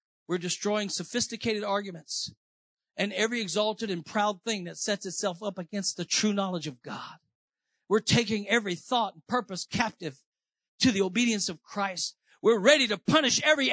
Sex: male